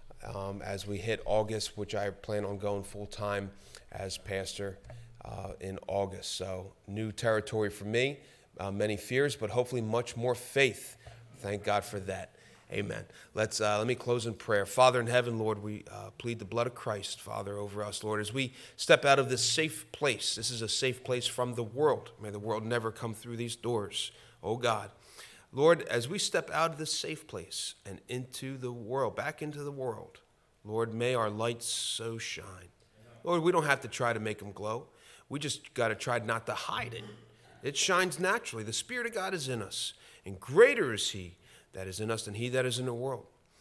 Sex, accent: male, American